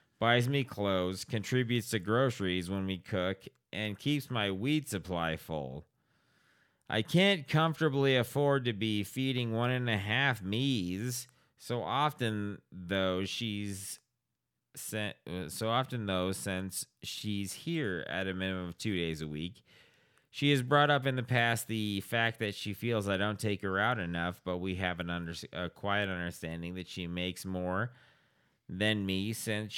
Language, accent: English, American